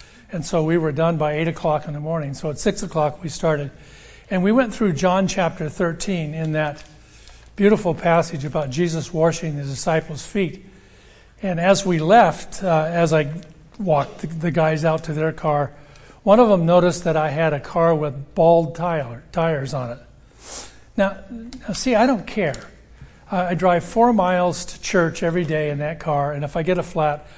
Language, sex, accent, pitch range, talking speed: English, male, American, 150-185 Hz, 190 wpm